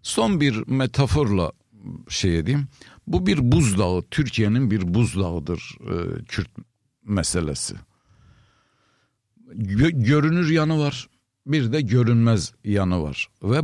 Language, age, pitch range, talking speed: Turkish, 60-79, 105-140 Hz, 95 wpm